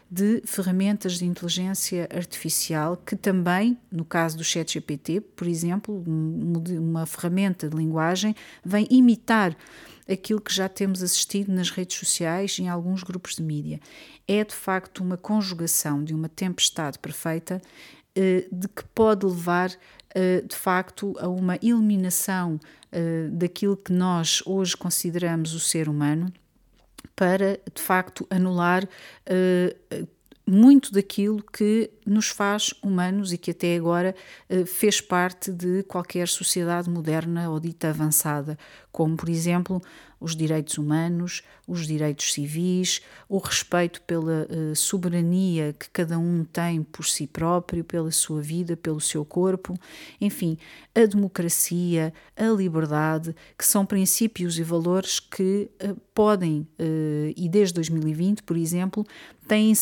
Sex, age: female, 40-59